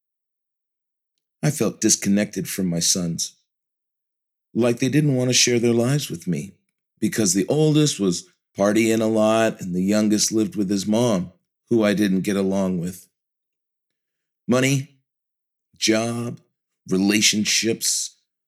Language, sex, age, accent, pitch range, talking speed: English, male, 40-59, American, 100-130 Hz, 125 wpm